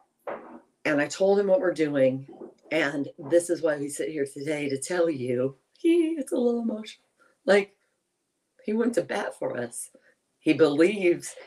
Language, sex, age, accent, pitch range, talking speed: English, female, 40-59, American, 135-195 Hz, 165 wpm